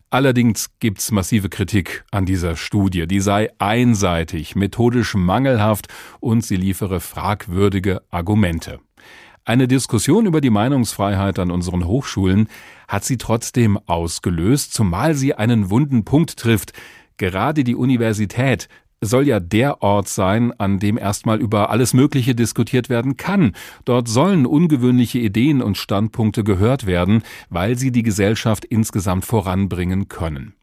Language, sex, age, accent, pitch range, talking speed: German, male, 40-59, German, 95-125 Hz, 130 wpm